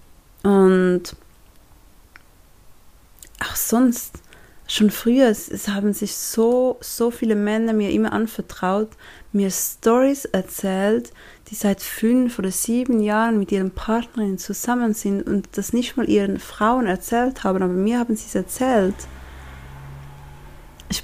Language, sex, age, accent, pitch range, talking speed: German, female, 30-49, German, 185-230 Hz, 130 wpm